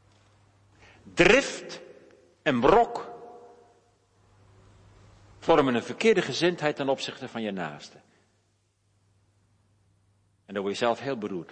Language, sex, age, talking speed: Dutch, male, 60-79, 100 wpm